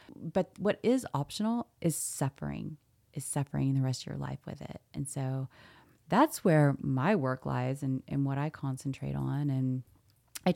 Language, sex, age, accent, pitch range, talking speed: English, female, 30-49, American, 140-180 Hz, 170 wpm